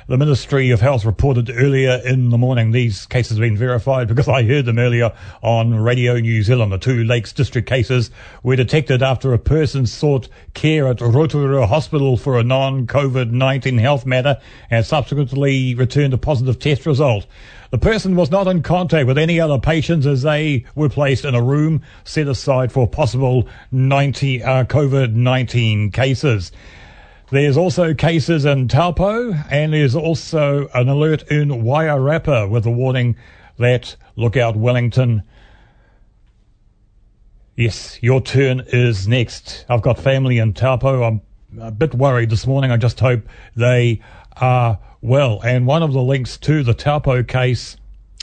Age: 40-59